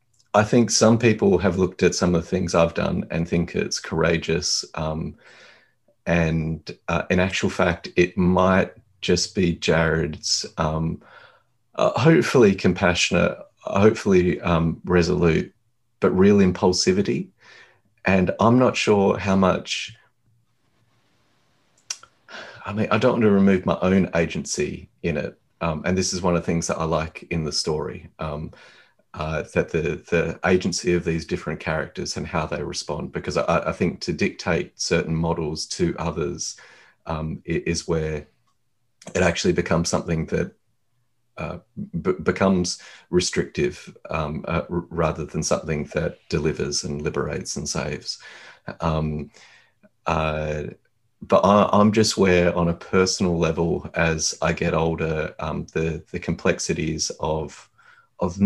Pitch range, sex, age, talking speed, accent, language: 80-100 Hz, male, 30-49, 145 wpm, Australian, English